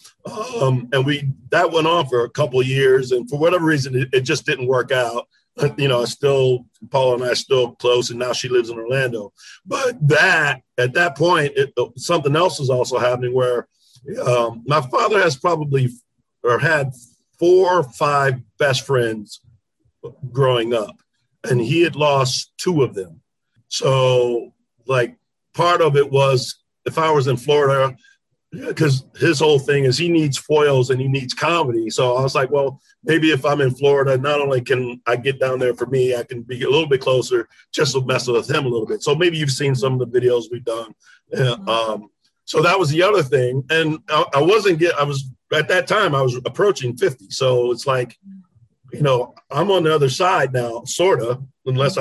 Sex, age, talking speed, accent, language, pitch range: male, 50-69, 200 wpm, American, English, 125-155 Hz